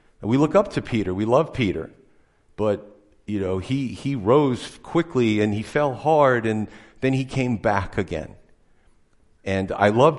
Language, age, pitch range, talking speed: English, 50-69, 100-130 Hz, 165 wpm